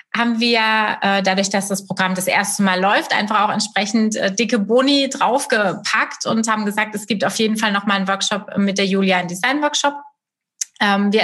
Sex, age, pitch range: female, 30-49, 190-225 Hz